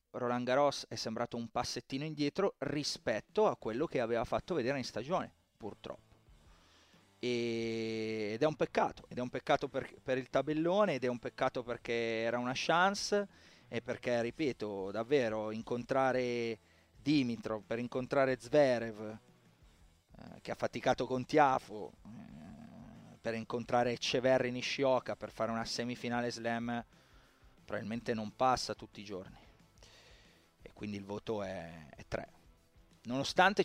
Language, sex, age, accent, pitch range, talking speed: Italian, male, 30-49, native, 115-155 Hz, 130 wpm